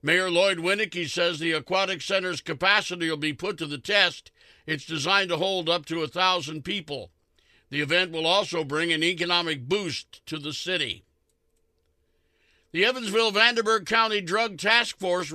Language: English